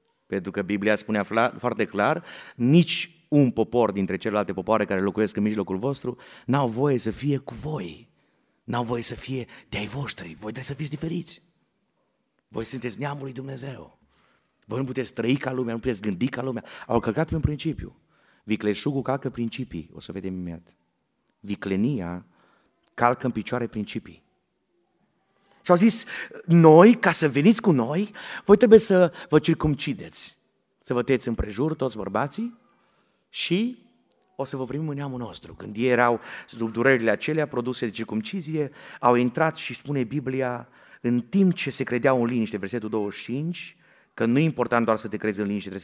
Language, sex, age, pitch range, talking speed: Romanian, male, 30-49, 110-145 Hz, 170 wpm